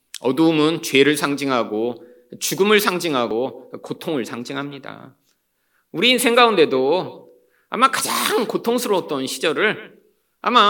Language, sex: Korean, male